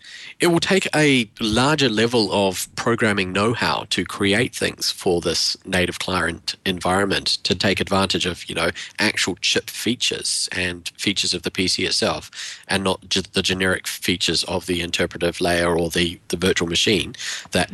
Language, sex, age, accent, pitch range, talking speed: English, male, 40-59, Australian, 95-115 Hz, 160 wpm